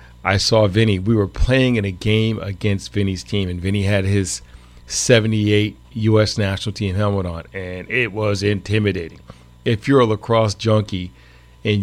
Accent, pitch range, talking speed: American, 95-115 Hz, 160 wpm